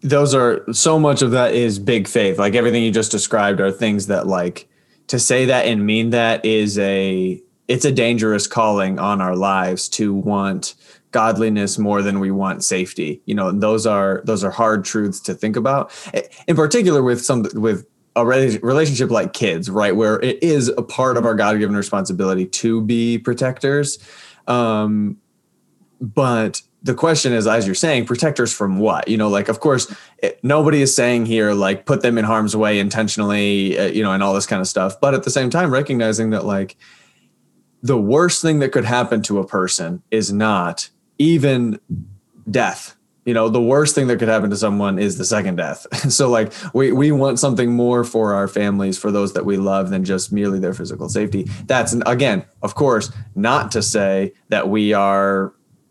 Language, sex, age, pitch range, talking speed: English, male, 20-39, 100-125 Hz, 190 wpm